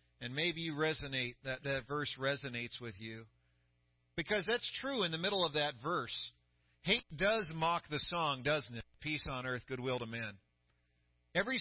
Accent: American